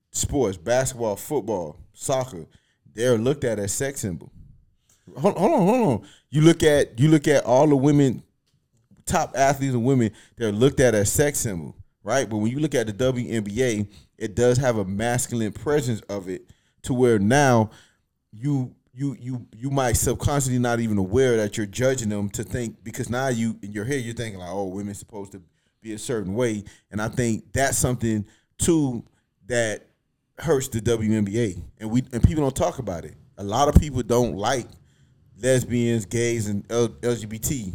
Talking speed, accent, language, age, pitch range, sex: 175 wpm, American, English, 30-49, 105-130 Hz, male